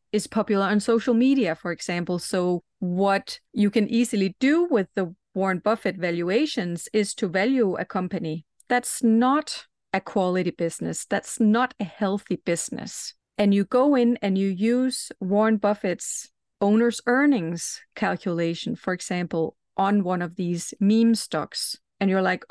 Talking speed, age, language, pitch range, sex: 150 wpm, 30-49, English, 180-220 Hz, female